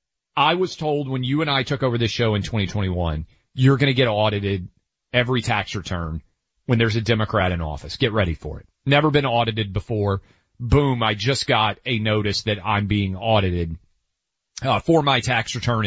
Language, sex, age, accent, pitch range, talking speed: English, male, 40-59, American, 100-135 Hz, 190 wpm